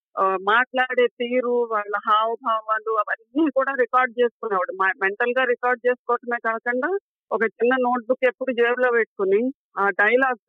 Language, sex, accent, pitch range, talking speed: Telugu, female, native, 215-255 Hz, 120 wpm